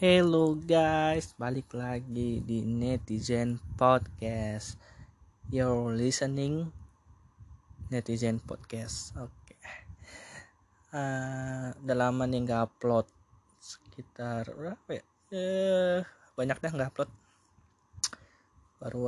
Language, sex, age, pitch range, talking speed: Indonesian, male, 20-39, 105-125 Hz, 85 wpm